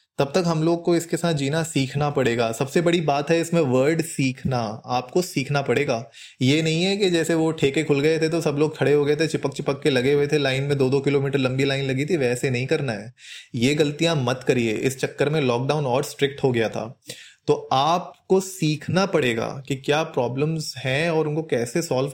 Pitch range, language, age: 130-160 Hz, Hindi, 30-49